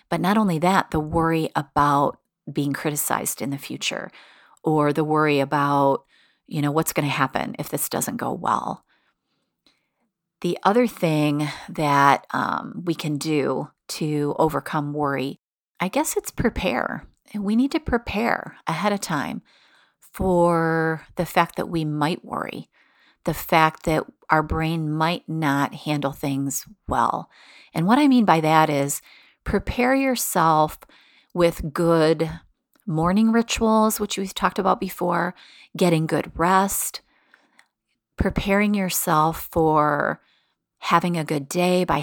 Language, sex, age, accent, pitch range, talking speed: English, female, 40-59, American, 150-185 Hz, 135 wpm